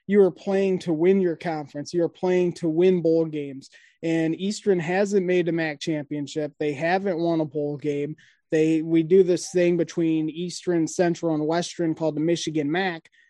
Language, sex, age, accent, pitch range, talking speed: English, male, 20-39, American, 160-185 Hz, 180 wpm